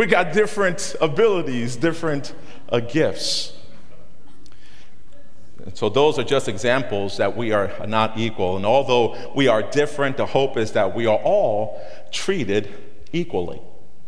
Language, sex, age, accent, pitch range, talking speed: English, male, 50-69, American, 110-140 Hz, 130 wpm